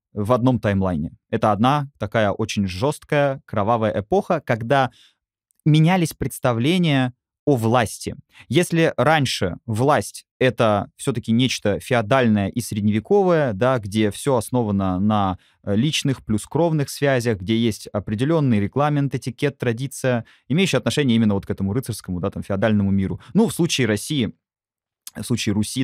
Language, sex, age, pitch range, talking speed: Russian, male, 20-39, 105-140 Hz, 130 wpm